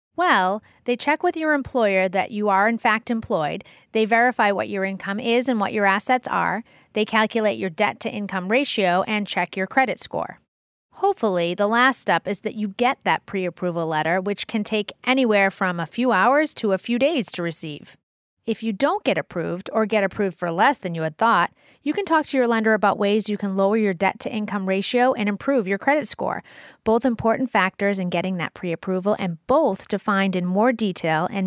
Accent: American